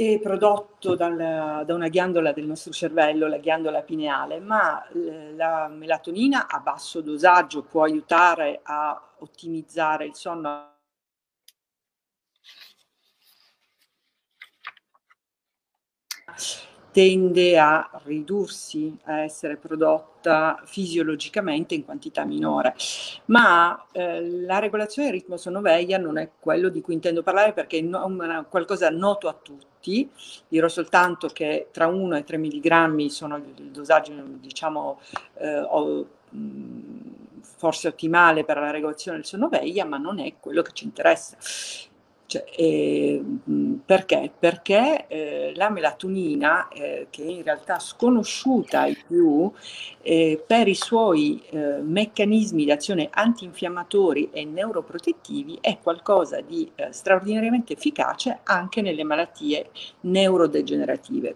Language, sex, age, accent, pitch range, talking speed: Italian, female, 50-69, native, 155-220 Hz, 115 wpm